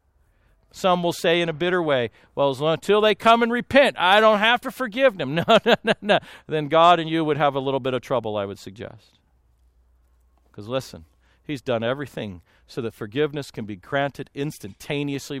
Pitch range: 110-175 Hz